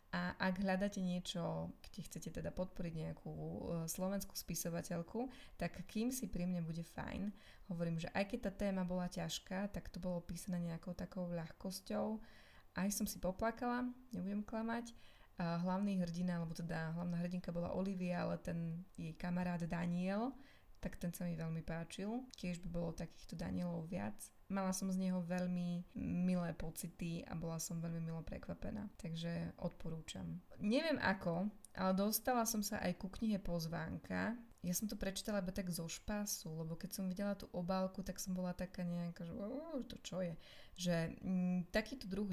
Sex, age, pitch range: female, 20-39, 170-200 Hz